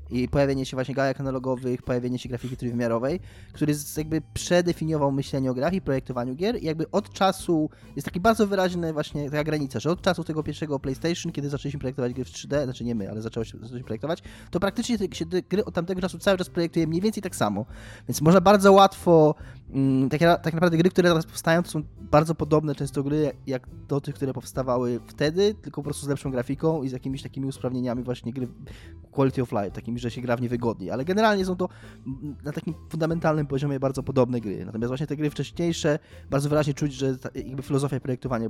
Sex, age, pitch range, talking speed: male, 20-39, 115-155 Hz, 200 wpm